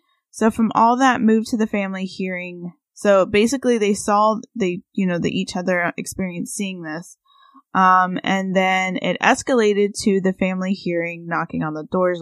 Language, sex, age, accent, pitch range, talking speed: English, female, 20-39, American, 180-230 Hz, 170 wpm